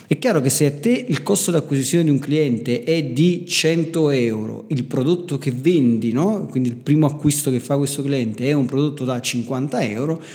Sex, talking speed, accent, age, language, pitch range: male, 210 wpm, native, 40-59, Italian, 125-155 Hz